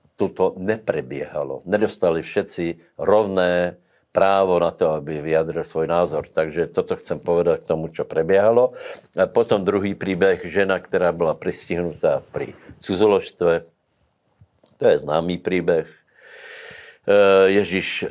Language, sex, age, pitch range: Slovak, male, 60-79, 80-105 Hz